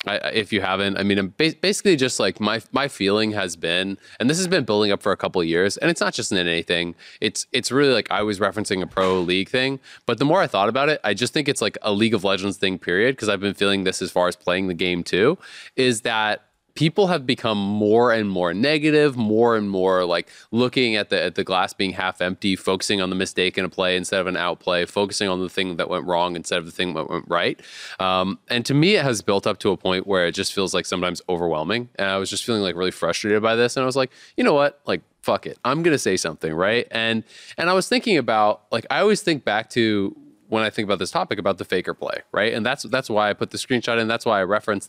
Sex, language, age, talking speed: male, English, 20-39, 265 wpm